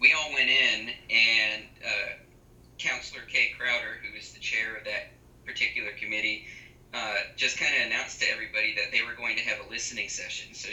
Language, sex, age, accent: English, male, 20-39, American